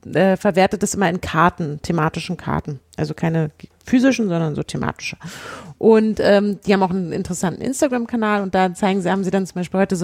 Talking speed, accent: 195 wpm, German